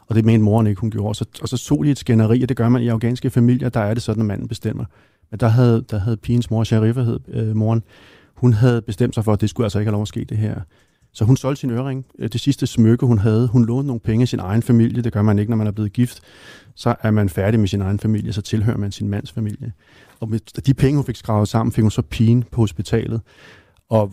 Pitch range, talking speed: 105-120 Hz, 270 wpm